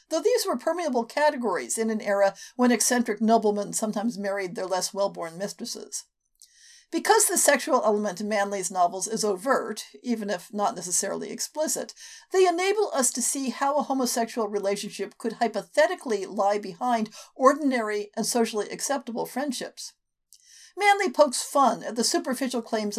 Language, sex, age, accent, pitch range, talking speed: English, female, 50-69, American, 210-300 Hz, 145 wpm